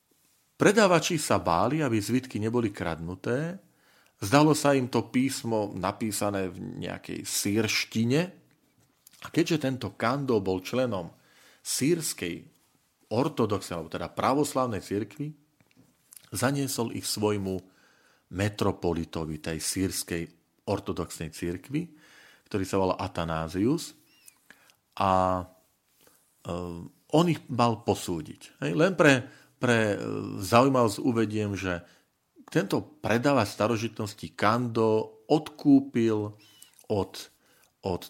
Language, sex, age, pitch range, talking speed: Slovak, male, 40-59, 95-125 Hz, 90 wpm